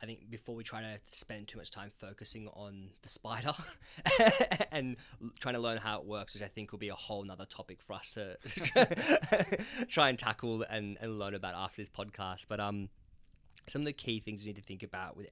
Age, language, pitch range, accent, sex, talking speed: 10-29, English, 100-115 Hz, Australian, male, 220 wpm